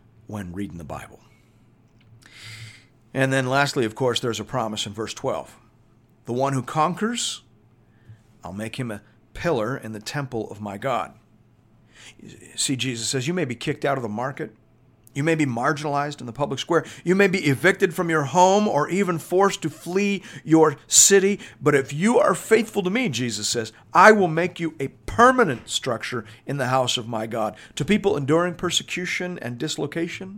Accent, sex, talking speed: American, male, 180 wpm